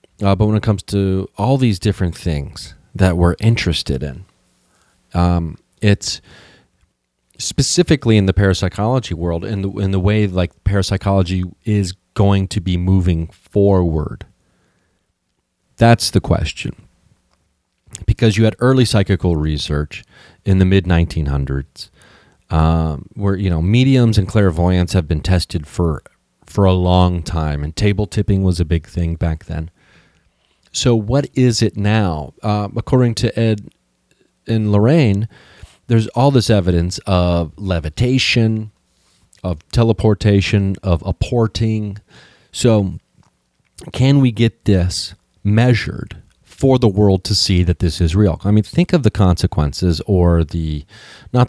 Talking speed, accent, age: 135 wpm, American, 30-49